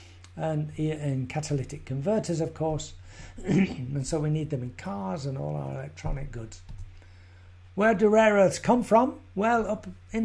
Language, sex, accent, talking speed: English, male, British, 160 wpm